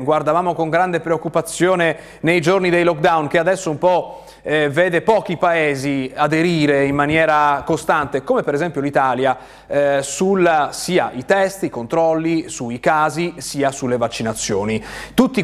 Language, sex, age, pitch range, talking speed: Italian, male, 30-49, 140-175 Hz, 145 wpm